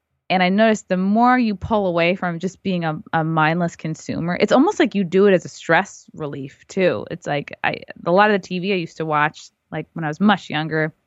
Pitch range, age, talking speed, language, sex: 155-190 Hz, 20-39, 235 wpm, English, female